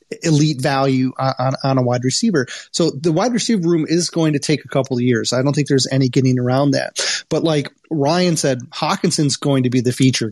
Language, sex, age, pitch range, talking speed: English, male, 30-49, 130-155 Hz, 225 wpm